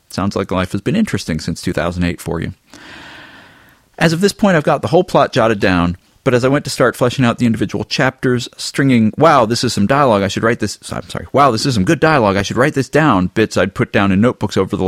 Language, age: English, 40-59